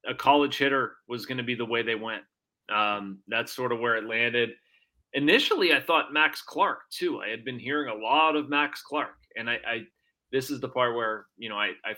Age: 30-49